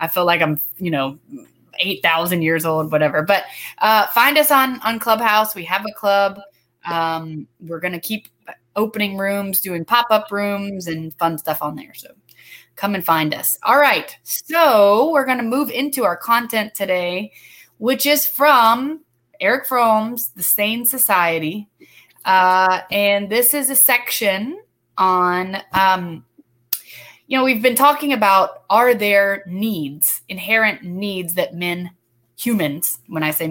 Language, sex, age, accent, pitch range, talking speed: English, female, 20-39, American, 170-220 Hz, 150 wpm